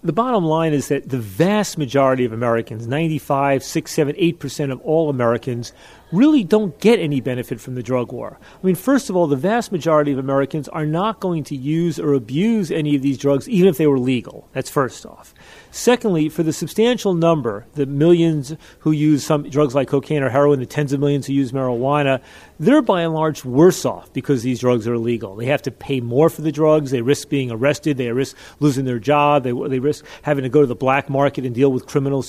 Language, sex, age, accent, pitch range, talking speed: English, male, 40-59, American, 135-180 Hz, 225 wpm